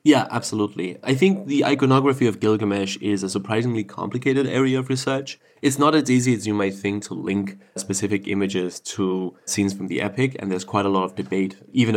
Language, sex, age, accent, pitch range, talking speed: English, male, 20-39, German, 100-130 Hz, 200 wpm